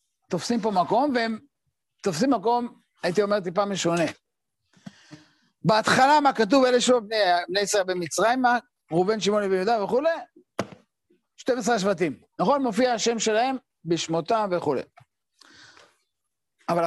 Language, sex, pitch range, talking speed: Hebrew, male, 180-245 Hz, 115 wpm